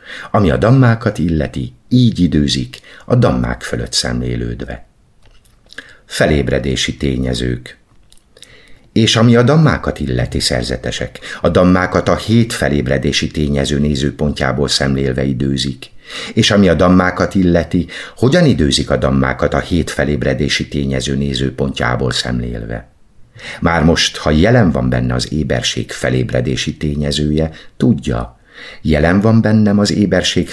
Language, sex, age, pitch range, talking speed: Hungarian, male, 60-79, 65-90 Hz, 115 wpm